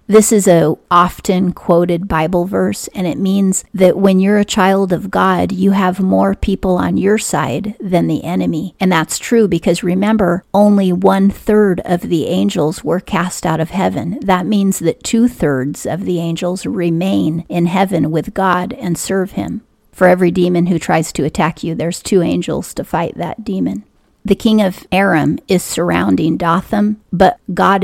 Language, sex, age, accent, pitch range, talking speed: English, female, 40-59, American, 170-195 Hz, 175 wpm